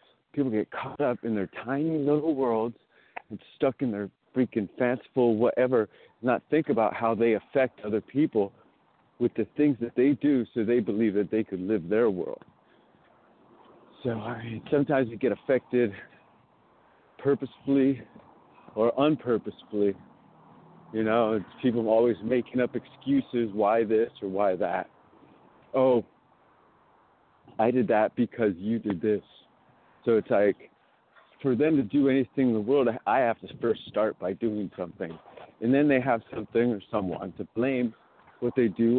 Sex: male